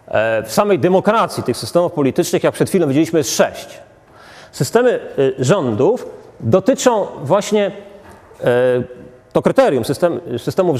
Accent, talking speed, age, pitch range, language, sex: native, 110 wpm, 30-49, 140-210 Hz, Polish, male